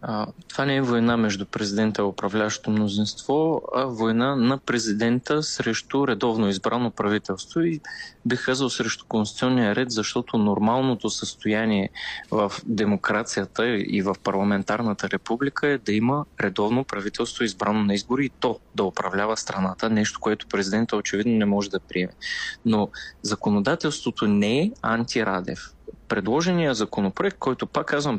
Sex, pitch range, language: male, 105-130 Hz, Bulgarian